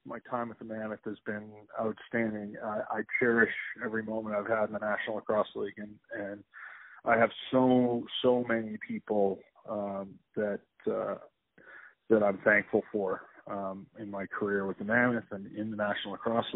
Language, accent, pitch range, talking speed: English, American, 105-120 Hz, 170 wpm